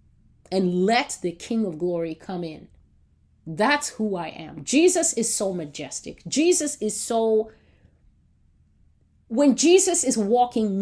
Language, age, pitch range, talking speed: English, 30-49, 175-255 Hz, 130 wpm